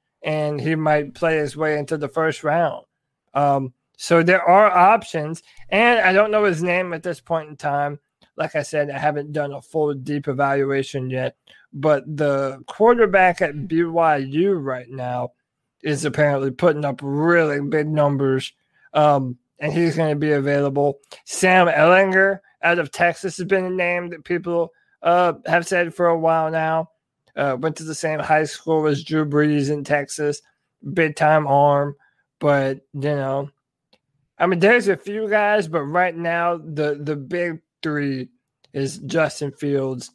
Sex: male